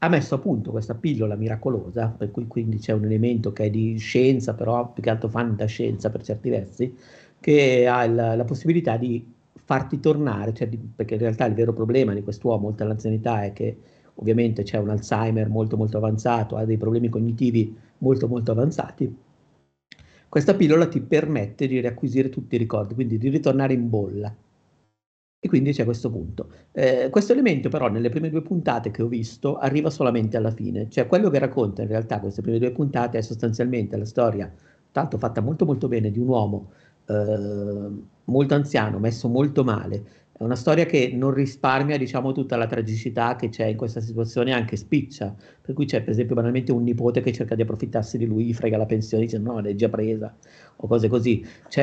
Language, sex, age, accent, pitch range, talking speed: Italian, male, 50-69, native, 110-130 Hz, 190 wpm